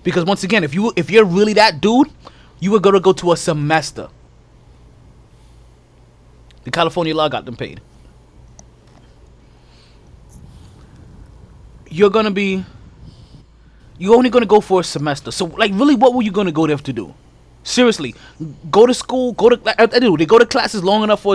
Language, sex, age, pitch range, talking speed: English, male, 20-39, 145-215 Hz, 175 wpm